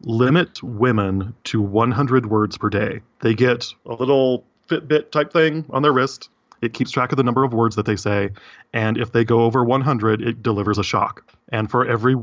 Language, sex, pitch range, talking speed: English, male, 105-125 Hz, 195 wpm